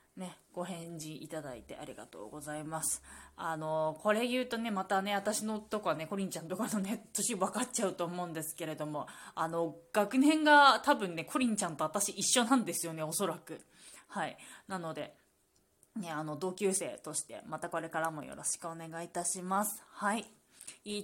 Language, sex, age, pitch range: Japanese, female, 20-39, 160-210 Hz